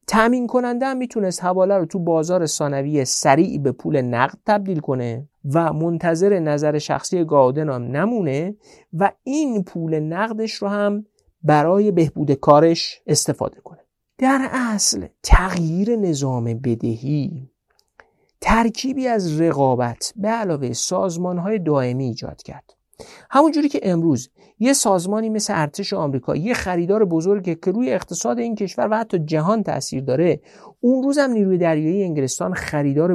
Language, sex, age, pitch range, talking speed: Persian, male, 50-69, 145-200 Hz, 135 wpm